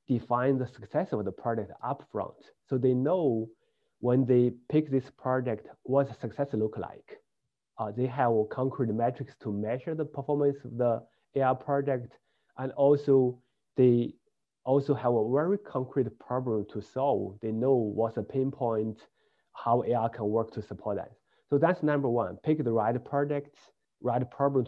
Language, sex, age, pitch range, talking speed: English, male, 30-49, 115-140 Hz, 160 wpm